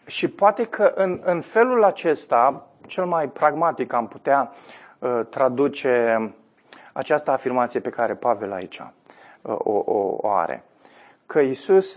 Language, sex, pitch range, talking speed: Romanian, male, 125-160 Hz, 130 wpm